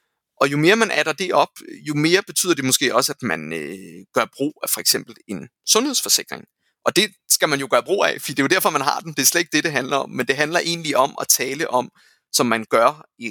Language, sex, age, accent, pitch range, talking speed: Danish, male, 30-49, native, 140-200 Hz, 265 wpm